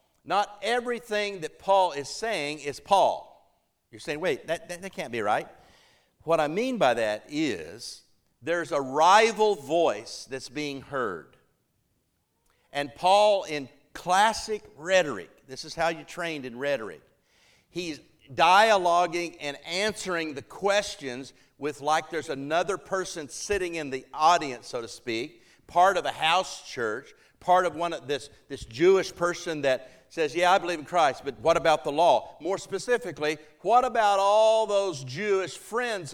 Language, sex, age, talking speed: German, male, 50-69, 155 wpm